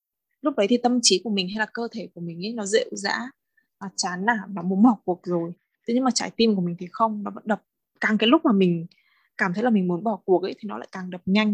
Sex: female